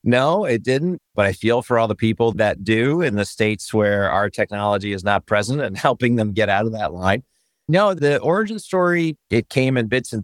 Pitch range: 95-115 Hz